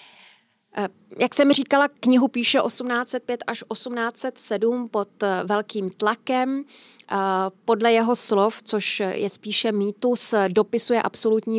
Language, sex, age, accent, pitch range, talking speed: Czech, female, 30-49, native, 200-225 Hz, 105 wpm